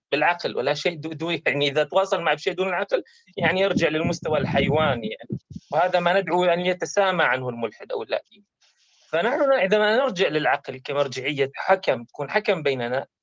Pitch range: 150-205 Hz